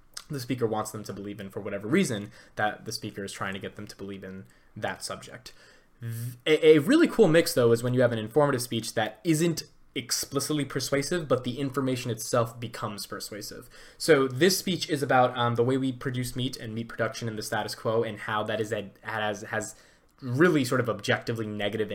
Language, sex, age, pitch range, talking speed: English, male, 20-39, 105-140 Hz, 205 wpm